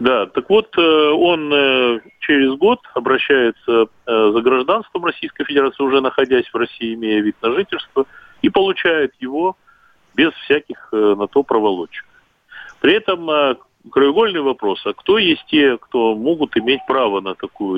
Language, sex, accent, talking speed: Russian, male, native, 140 wpm